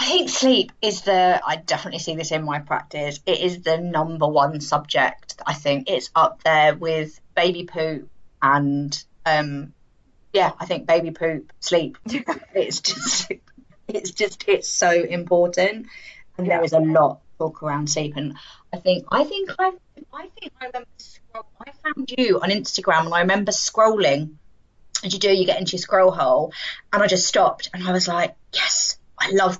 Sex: female